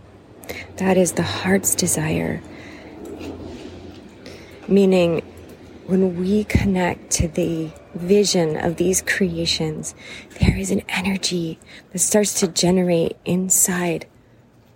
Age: 30-49